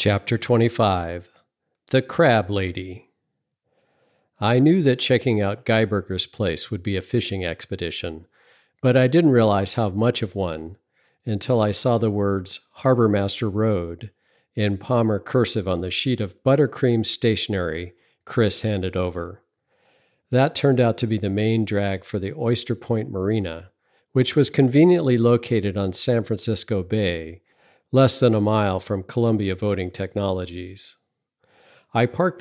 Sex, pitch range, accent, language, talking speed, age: male, 95-120 Hz, American, English, 140 wpm, 50-69